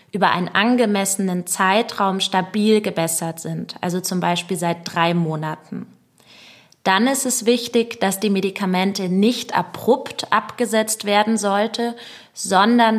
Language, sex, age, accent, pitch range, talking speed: German, female, 20-39, German, 190-225 Hz, 120 wpm